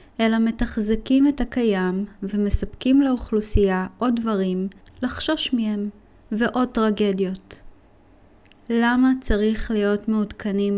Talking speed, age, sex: 90 wpm, 20-39, female